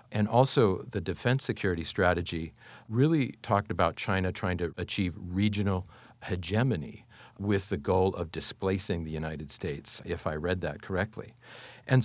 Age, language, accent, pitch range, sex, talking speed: 50-69, English, American, 90-115 Hz, male, 145 wpm